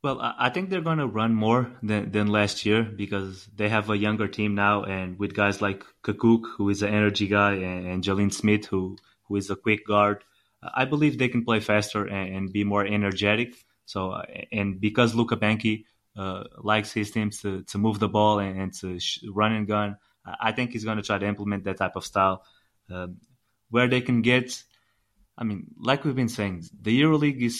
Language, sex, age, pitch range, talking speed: English, male, 20-39, 100-115 Hz, 205 wpm